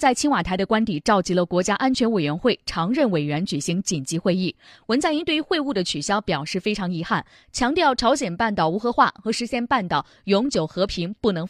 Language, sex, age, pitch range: Chinese, female, 20-39, 185-245 Hz